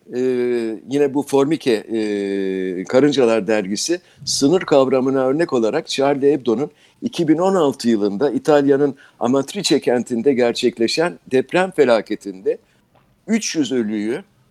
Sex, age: male, 60-79